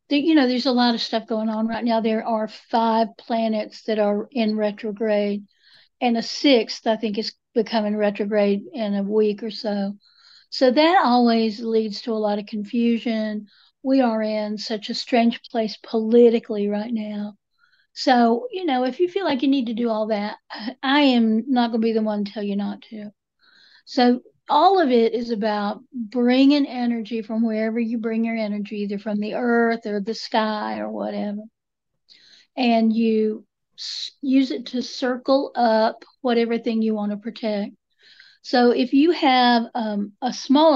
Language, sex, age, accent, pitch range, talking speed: English, female, 60-79, American, 215-245 Hz, 175 wpm